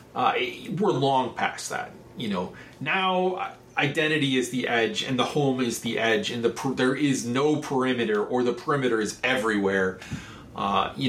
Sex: male